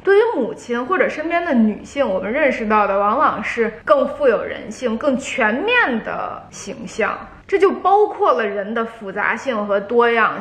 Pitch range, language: 215-290 Hz, Chinese